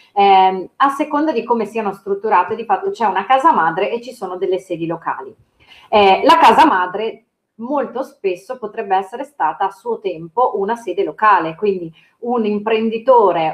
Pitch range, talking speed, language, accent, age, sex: 185-225 Hz, 165 wpm, Italian, native, 30-49, female